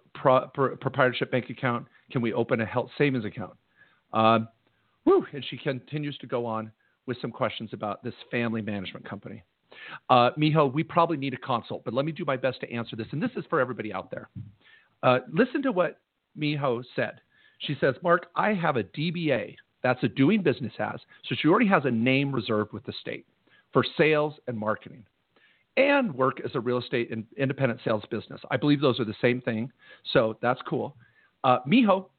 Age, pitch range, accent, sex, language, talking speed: 40-59, 115-150 Hz, American, male, English, 195 wpm